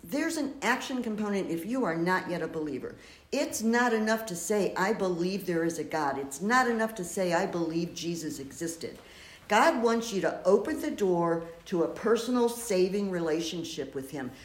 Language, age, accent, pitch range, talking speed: English, 60-79, American, 170-230 Hz, 185 wpm